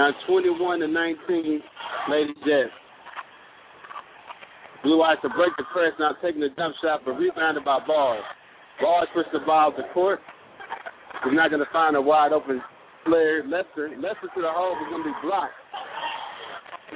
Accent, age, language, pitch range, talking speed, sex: American, 50-69, English, 135-175 Hz, 150 wpm, male